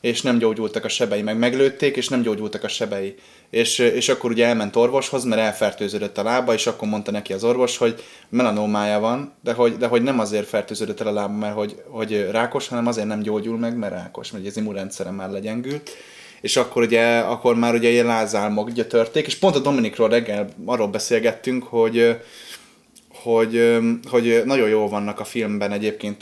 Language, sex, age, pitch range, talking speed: Hungarian, male, 20-39, 105-120 Hz, 190 wpm